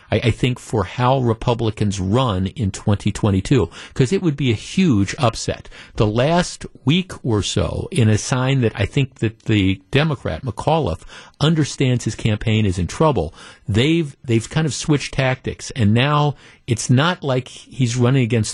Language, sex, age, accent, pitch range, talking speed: English, male, 50-69, American, 105-130 Hz, 160 wpm